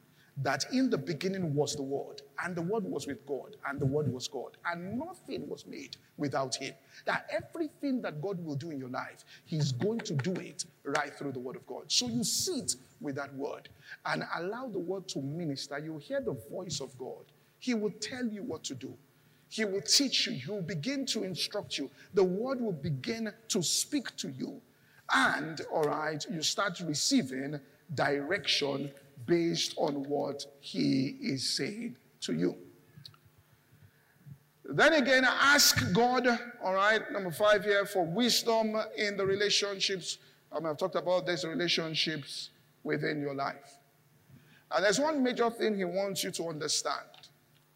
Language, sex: English, male